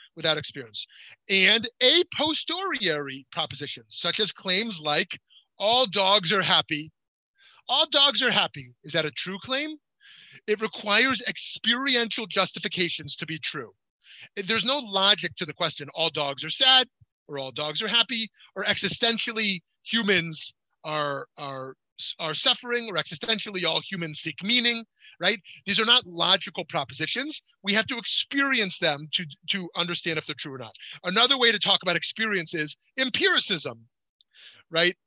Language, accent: English, American